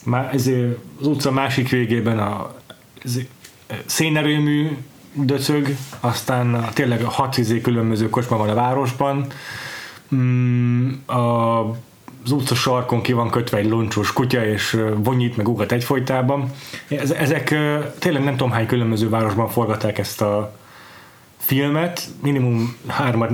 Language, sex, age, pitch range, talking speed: Hungarian, male, 30-49, 115-135 Hz, 125 wpm